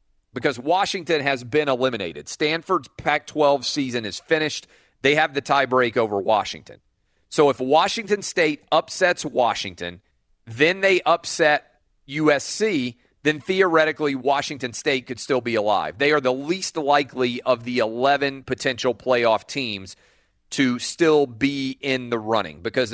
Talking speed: 140 wpm